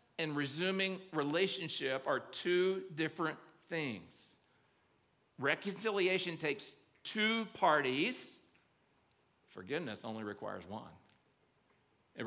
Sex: male